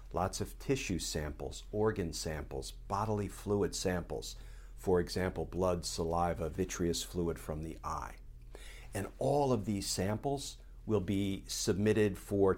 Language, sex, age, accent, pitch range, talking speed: English, male, 50-69, American, 80-105 Hz, 130 wpm